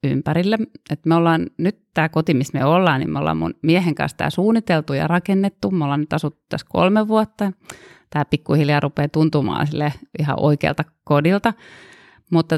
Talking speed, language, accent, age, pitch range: 165 wpm, Finnish, native, 30-49, 145-170 Hz